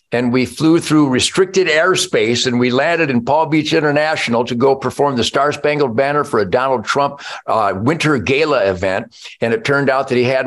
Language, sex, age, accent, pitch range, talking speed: English, male, 50-69, American, 135-190 Hz, 200 wpm